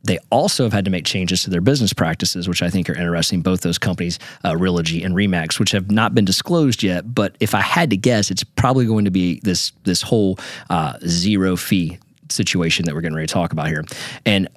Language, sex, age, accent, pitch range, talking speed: English, male, 30-49, American, 90-120 Hz, 230 wpm